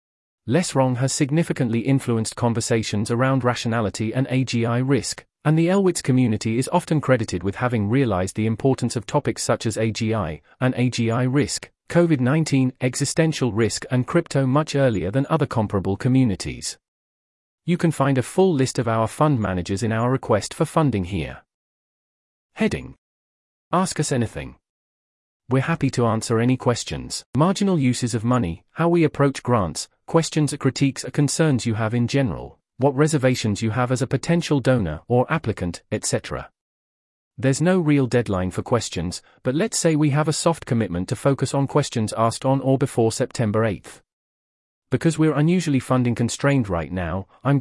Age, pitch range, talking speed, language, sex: 30-49, 105-140 Hz, 160 wpm, English, male